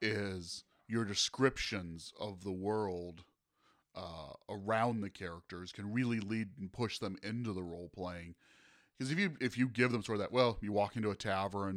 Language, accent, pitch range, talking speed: English, American, 95-110 Hz, 185 wpm